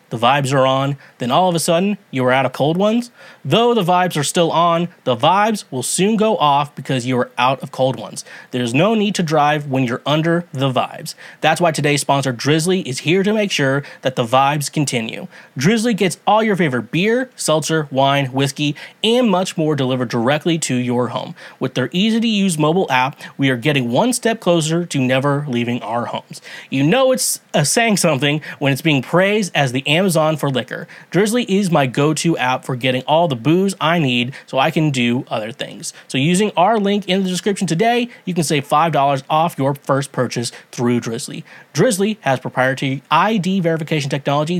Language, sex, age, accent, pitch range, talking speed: English, male, 30-49, American, 135-185 Hz, 200 wpm